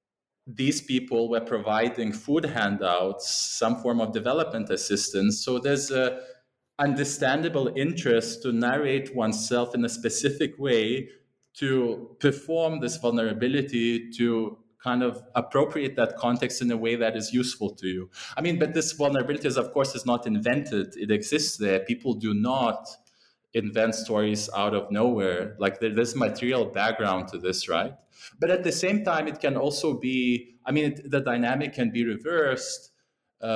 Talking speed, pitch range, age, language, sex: 155 wpm, 110-140 Hz, 20-39, English, male